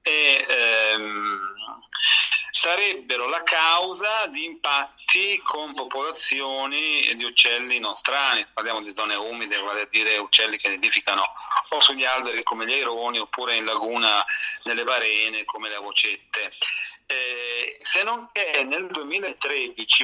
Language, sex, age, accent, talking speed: Italian, male, 40-59, native, 130 wpm